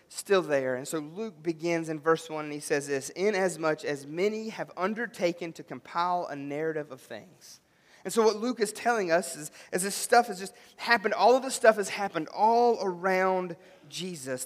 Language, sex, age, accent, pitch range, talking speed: English, male, 30-49, American, 160-220 Hz, 195 wpm